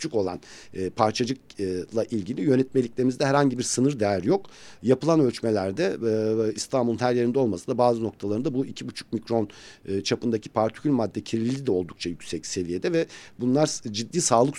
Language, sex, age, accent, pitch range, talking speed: Turkish, male, 50-69, native, 100-125 Hz, 135 wpm